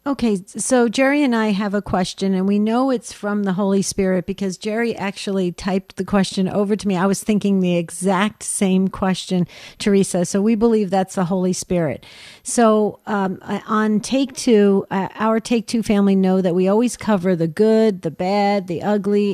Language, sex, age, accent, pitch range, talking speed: English, female, 50-69, American, 185-220 Hz, 190 wpm